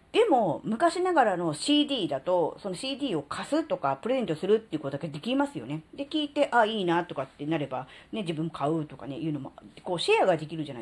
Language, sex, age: Japanese, female, 40-59